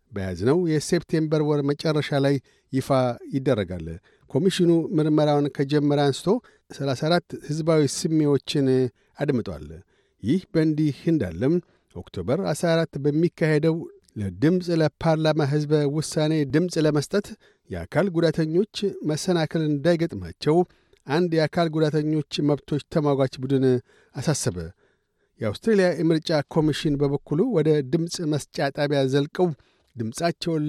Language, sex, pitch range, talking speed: Amharic, male, 145-170 Hz, 95 wpm